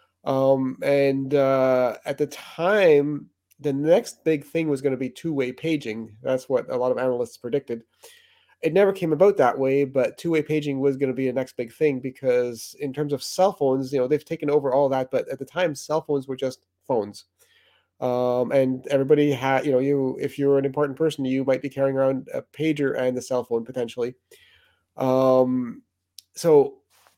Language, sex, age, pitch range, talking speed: English, male, 30-49, 130-155 Hz, 195 wpm